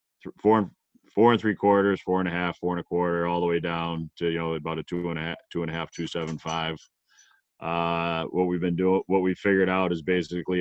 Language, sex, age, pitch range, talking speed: English, male, 30-49, 80-90 Hz, 255 wpm